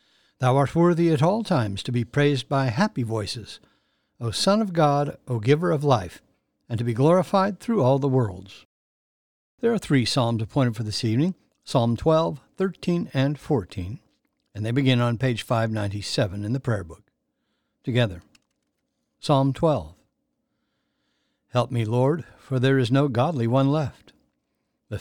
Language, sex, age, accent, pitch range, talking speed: English, male, 60-79, American, 115-145 Hz, 155 wpm